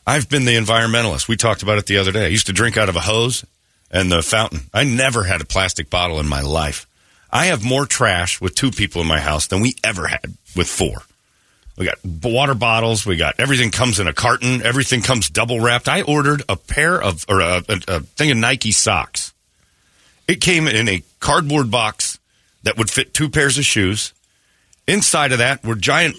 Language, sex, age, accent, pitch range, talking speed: English, male, 40-59, American, 95-135 Hz, 215 wpm